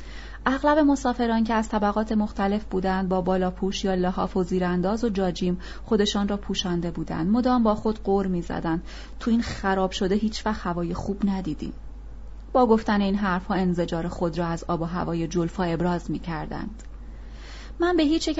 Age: 30-49